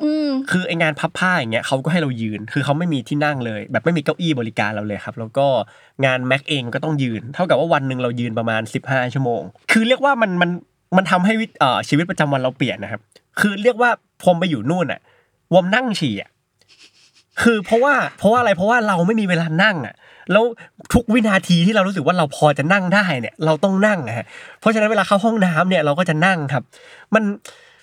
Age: 20-39